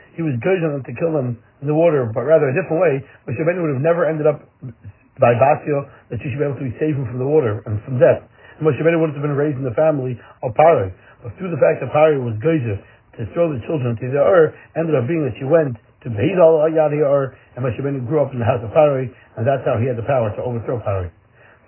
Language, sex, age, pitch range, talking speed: English, male, 60-79, 120-155 Hz, 245 wpm